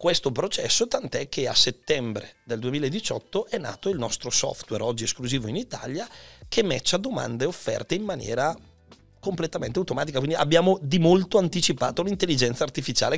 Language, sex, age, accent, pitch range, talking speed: Italian, male, 30-49, native, 115-155 Hz, 150 wpm